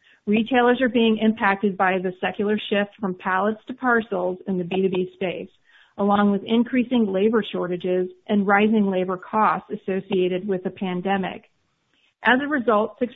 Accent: American